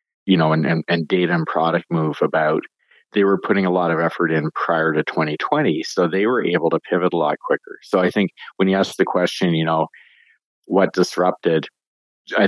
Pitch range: 80-90 Hz